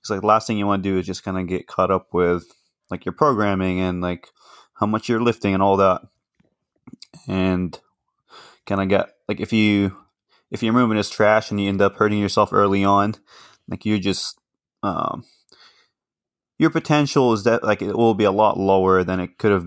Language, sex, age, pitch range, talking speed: English, male, 20-39, 95-110 Hz, 205 wpm